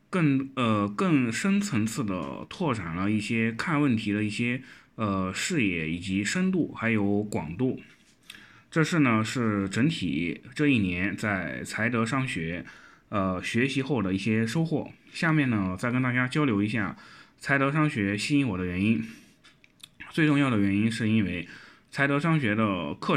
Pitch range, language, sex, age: 100-135 Hz, Chinese, male, 20-39